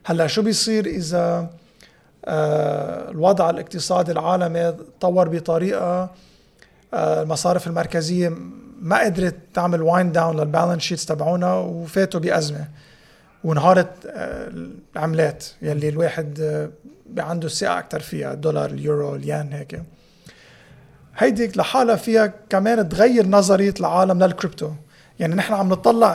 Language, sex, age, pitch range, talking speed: Arabic, male, 30-49, 160-200 Hz, 105 wpm